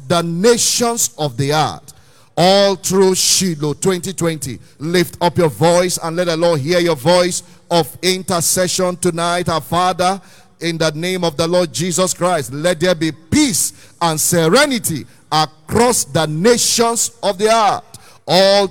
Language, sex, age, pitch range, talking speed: English, male, 40-59, 155-185 Hz, 150 wpm